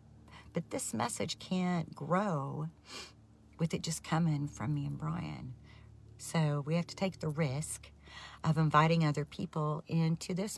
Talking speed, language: 145 wpm, English